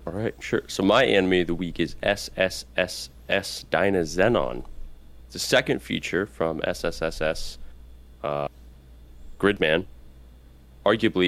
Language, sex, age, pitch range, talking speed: English, male, 20-39, 65-95 Hz, 105 wpm